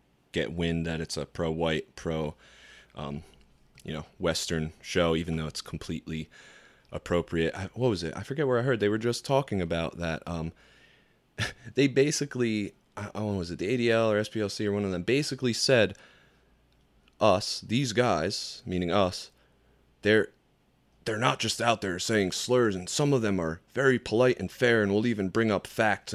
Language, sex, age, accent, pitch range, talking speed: English, male, 30-49, American, 80-105 Hz, 180 wpm